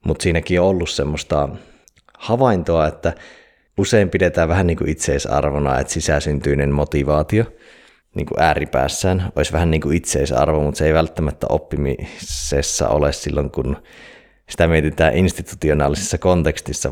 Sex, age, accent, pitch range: male, 30-49, native, 75-90 Hz